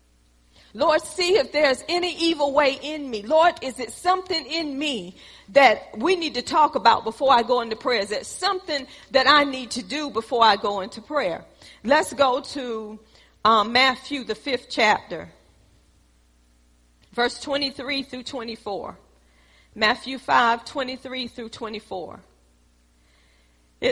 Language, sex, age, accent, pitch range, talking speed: English, female, 40-59, American, 210-290 Hz, 120 wpm